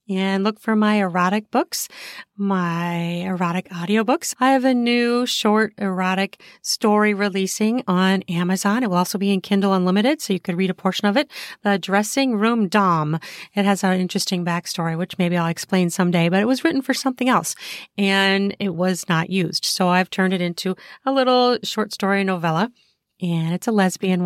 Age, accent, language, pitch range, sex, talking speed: 40-59, American, English, 175-230 Hz, female, 185 wpm